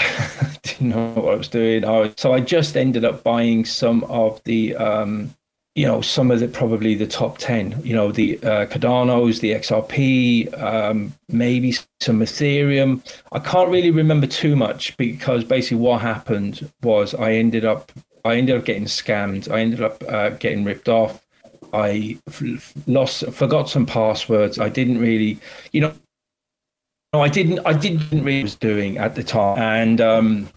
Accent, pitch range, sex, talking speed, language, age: British, 110-140 Hz, male, 175 wpm, English, 30-49